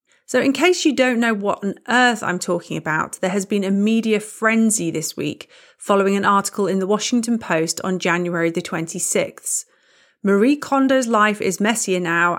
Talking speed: 180 wpm